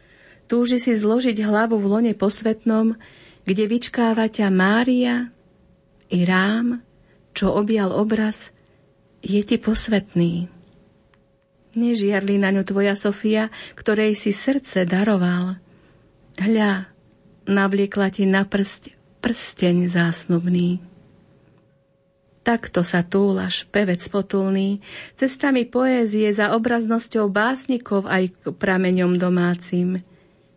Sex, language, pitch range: female, Slovak, 180-215 Hz